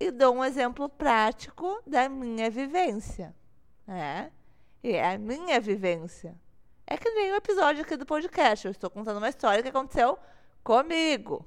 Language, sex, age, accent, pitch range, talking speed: Portuguese, female, 20-39, Brazilian, 230-305 Hz, 155 wpm